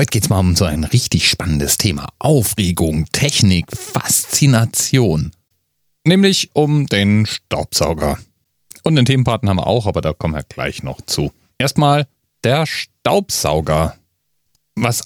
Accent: German